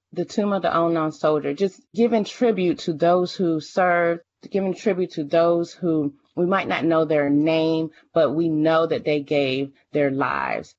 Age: 30-49